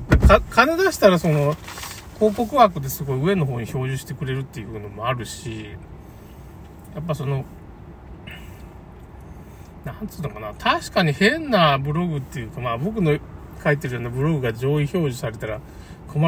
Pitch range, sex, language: 100-155 Hz, male, Japanese